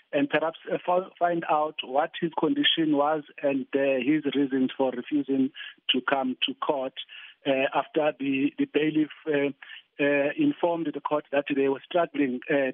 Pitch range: 145-170 Hz